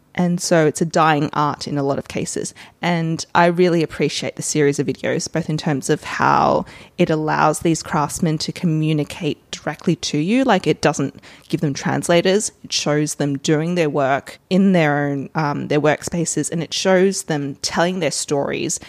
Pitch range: 145-180 Hz